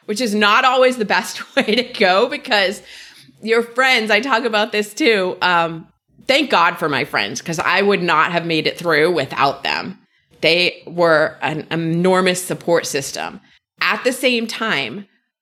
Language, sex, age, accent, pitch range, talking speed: English, female, 30-49, American, 165-215 Hz, 165 wpm